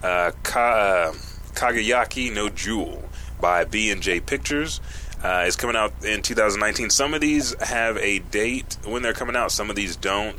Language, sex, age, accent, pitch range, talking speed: English, male, 30-49, American, 90-115 Hz, 180 wpm